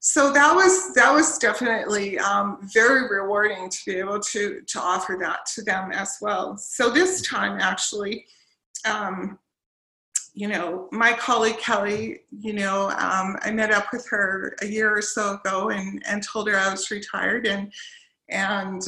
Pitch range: 195-245 Hz